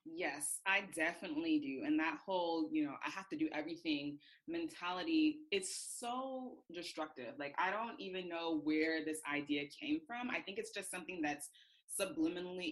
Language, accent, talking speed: English, American, 165 wpm